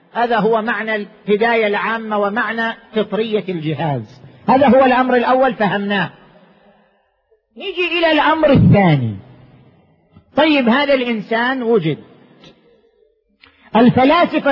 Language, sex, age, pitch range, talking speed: Arabic, male, 40-59, 210-290 Hz, 90 wpm